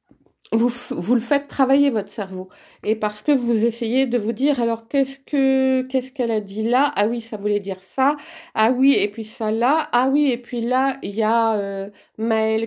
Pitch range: 220-280 Hz